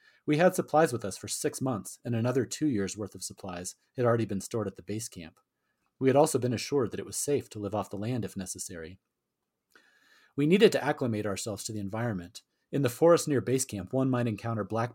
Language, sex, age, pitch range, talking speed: English, male, 30-49, 105-125 Hz, 230 wpm